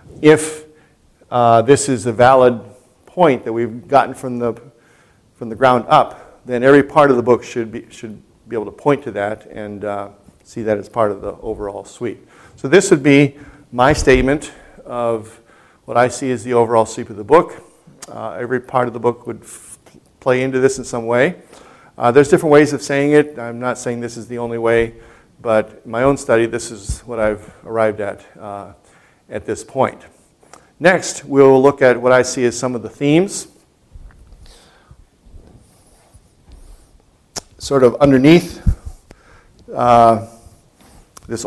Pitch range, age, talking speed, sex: 115-135 Hz, 50-69, 170 wpm, male